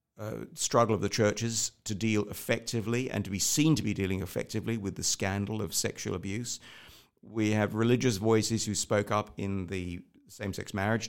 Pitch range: 95-120 Hz